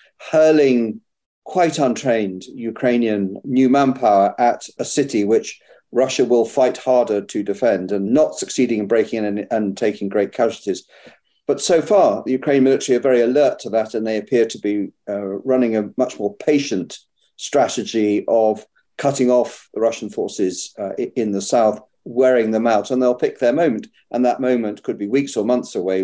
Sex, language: male, English